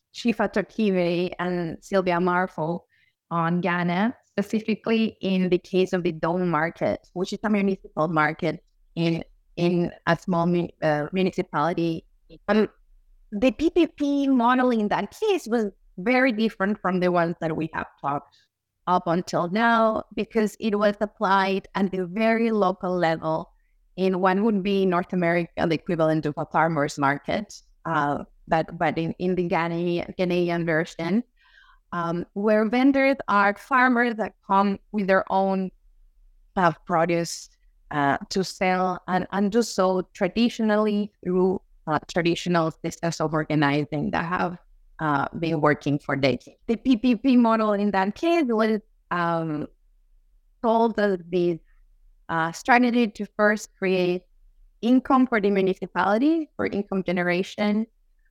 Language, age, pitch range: English, 20-39, 170-215 Hz